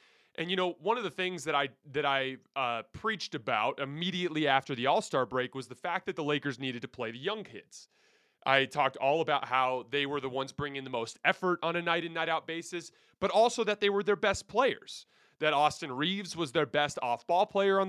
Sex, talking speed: male, 220 wpm